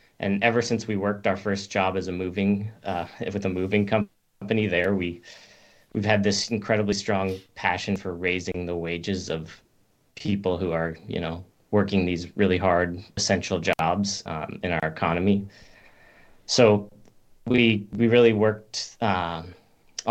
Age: 30-49